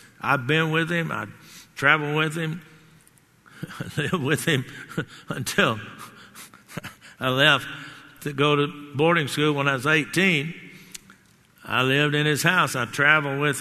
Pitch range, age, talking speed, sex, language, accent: 145-185 Hz, 60-79, 145 wpm, male, English, American